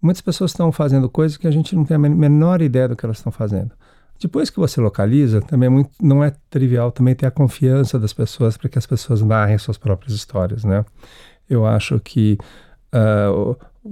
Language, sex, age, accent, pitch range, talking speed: Portuguese, male, 50-69, Brazilian, 110-135 Hz, 205 wpm